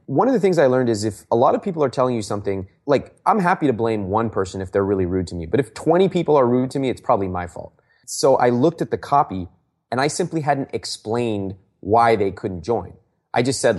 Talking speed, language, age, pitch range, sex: 255 wpm, English, 30-49, 100-145 Hz, male